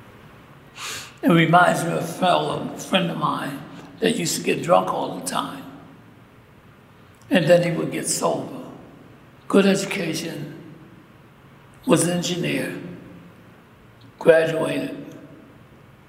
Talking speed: 110 wpm